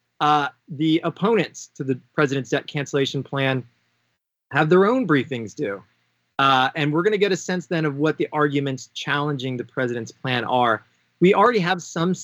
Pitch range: 125-155 Hz